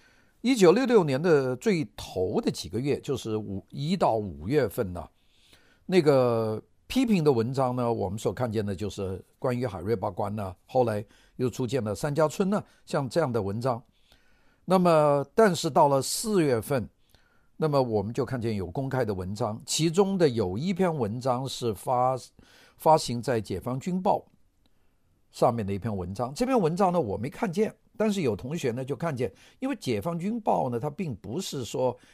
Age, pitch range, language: 50-69, 110-170 Hz, Chinese